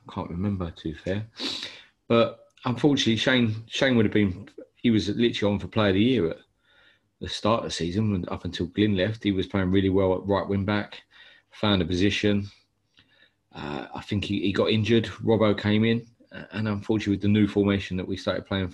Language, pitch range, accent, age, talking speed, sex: English, 95-110 Hz, British, 30-49, 200 wpm, male